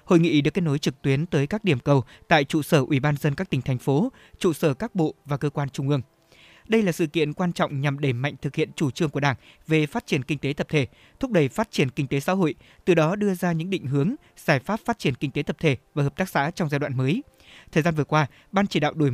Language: Vietnamese